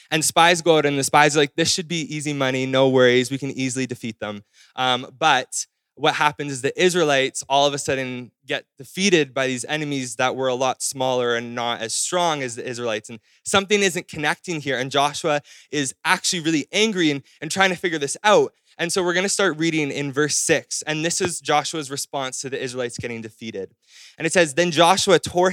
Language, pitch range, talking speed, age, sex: English, 125-160 Hz, 220 wpm, 20-39, male